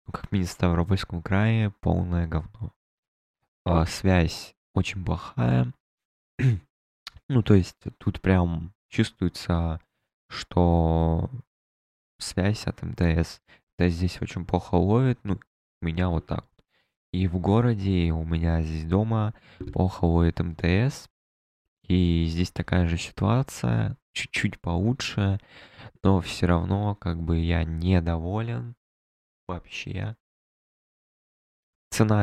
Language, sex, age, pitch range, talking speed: Russian, male, 20-39, 85-110 Hz, 110 wpm